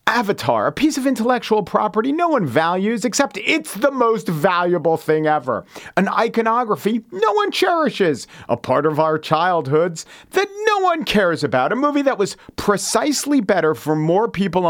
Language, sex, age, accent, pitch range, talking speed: English, male, 40-59, American, 135-205 Hz, 165 wpm